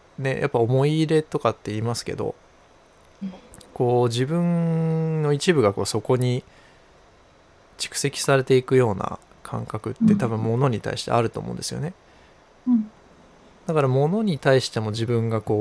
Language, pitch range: Japanese, 115-145 Hz